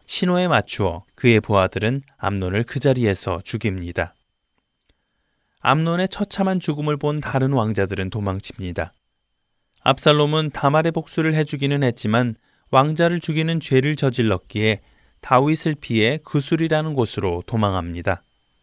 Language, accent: Korean, native